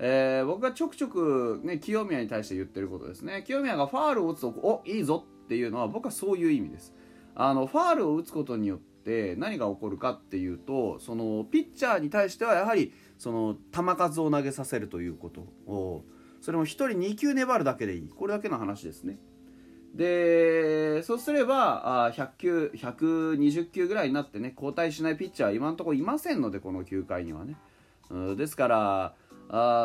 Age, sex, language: 30-49, male, Japanese